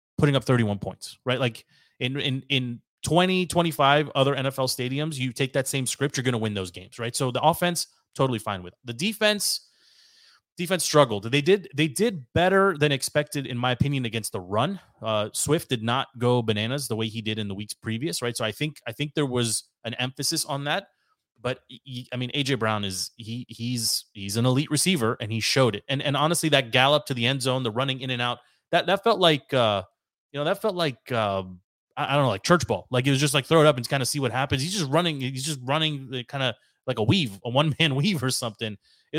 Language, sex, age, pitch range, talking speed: English, male, 30-49, 120-150 Hz, 235 wpm